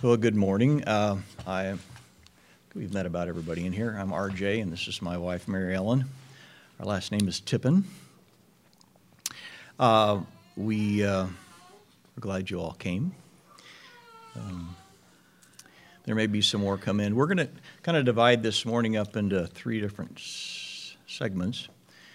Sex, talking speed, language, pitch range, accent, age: male, 150 wpm, English, 95-115 Hz, American, 50-69